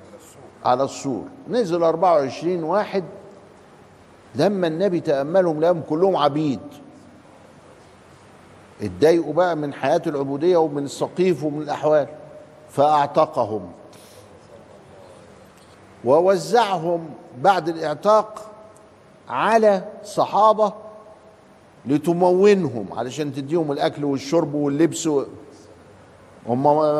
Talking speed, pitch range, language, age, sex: 75 wpm, 140-190 Hz, Arabic, 50-69, male